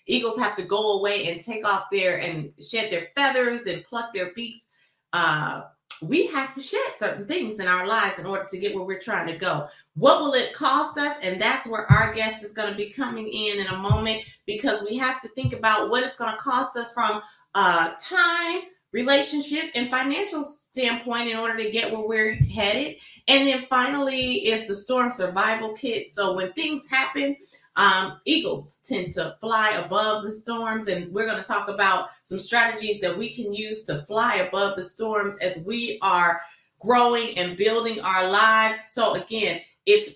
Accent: American